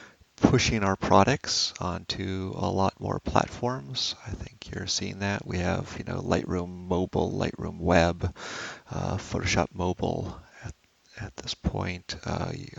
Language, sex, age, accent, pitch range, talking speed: English, male, 40-59, American, 85-100 Hz, 135 wpm